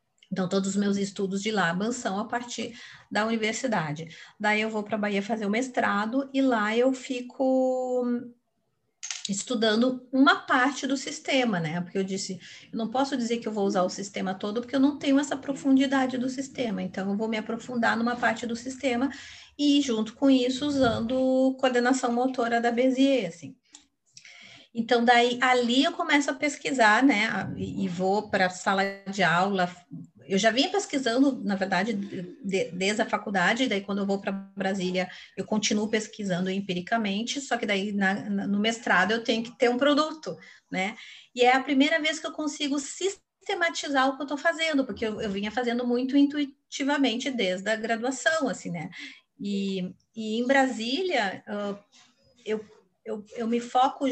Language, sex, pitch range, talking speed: Portuguese, female, 200-265 Hz, 170 wpm